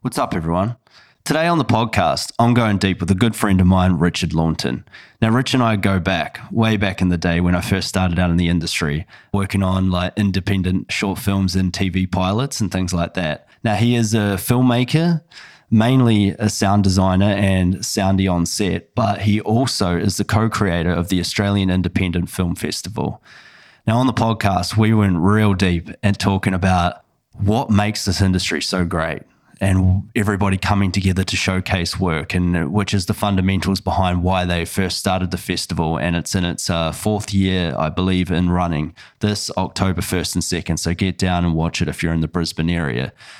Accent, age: Australian, 20-39